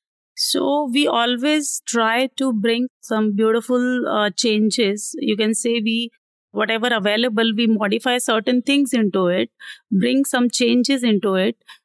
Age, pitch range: 30-49, 215-255 Hz